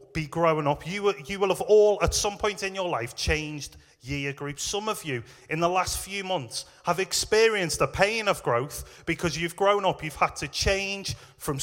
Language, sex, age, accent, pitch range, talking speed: English, male, 30-49, British, 140-180 Hz, 215 wpm